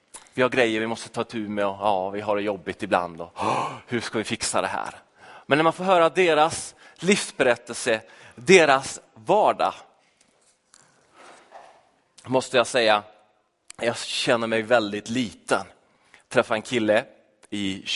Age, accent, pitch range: 30-49, native, 110-150 Hz